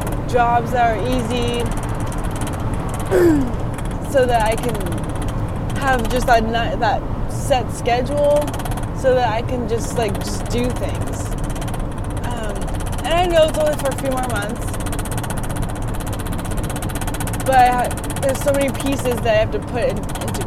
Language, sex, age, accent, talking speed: English, female, 20-39, American, 140 wpm